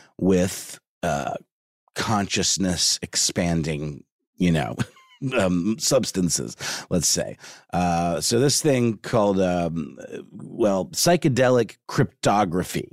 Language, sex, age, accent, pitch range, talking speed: English, male, 30-49, American, 95-130 Hz, 85 wpm